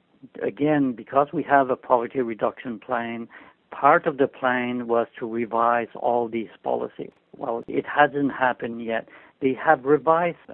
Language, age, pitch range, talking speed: English, 70-89, 115-140 Hz, 150 wpm